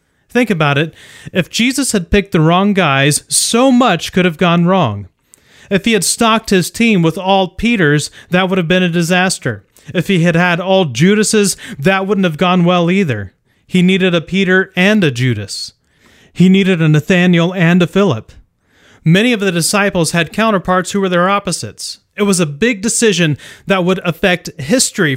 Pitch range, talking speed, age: 145-190 Hz, 180 wpm, 30-49